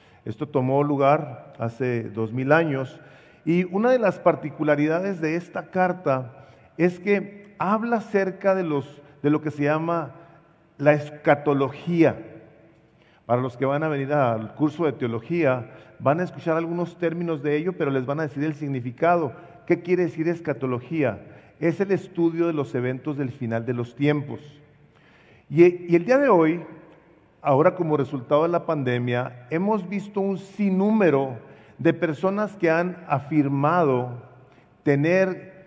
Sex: male